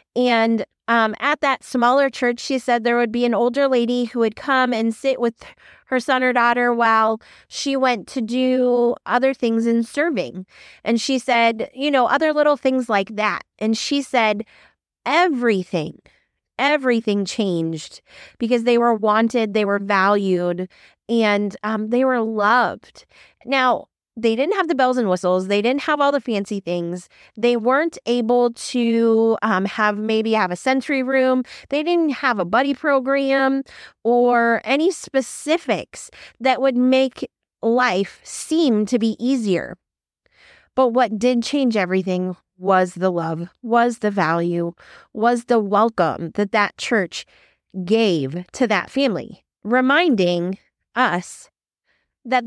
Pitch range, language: 210-260 Hz, English